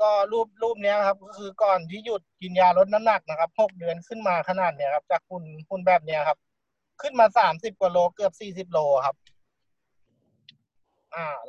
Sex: male